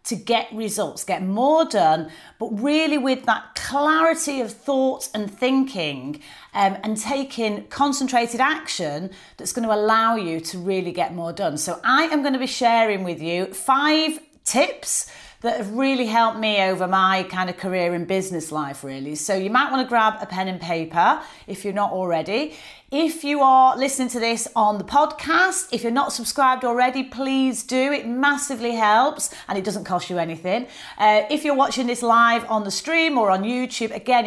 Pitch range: 190-265 Hz